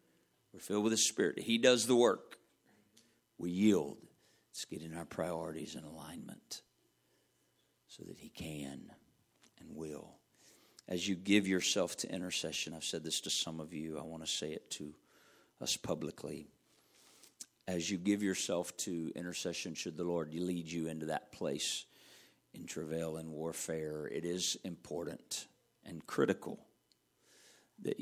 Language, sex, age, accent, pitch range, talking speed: English, male, 50-69, American, 75-85 Hz, 150 wpm